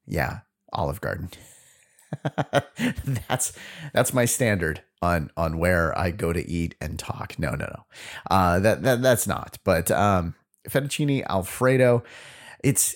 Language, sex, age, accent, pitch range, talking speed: English, male, 30-49, American, 100-145 Hz, 135 wpm